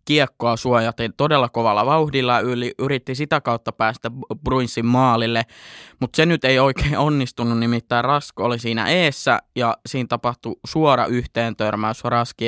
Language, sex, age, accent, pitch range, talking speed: Finnish, male, 20-39, native, 115-130 Hz, 145 wpm